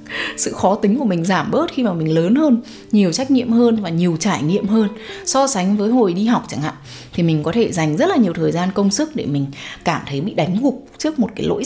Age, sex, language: 20-39, female, English